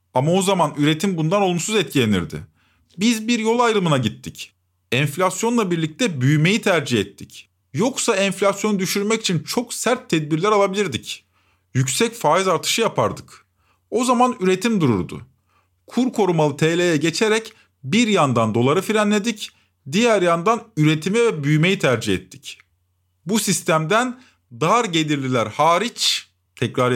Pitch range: 135-210 Hz